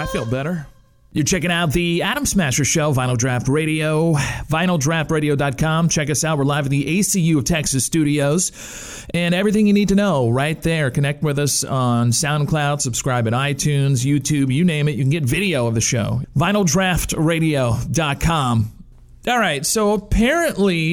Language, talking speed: English, 165 wpm